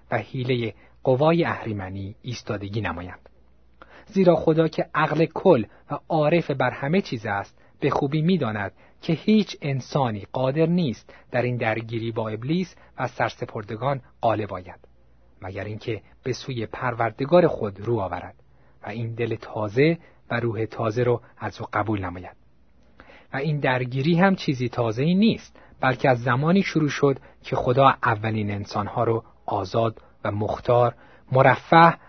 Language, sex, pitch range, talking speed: Persian, male, 105-140 Hz, 140 wpm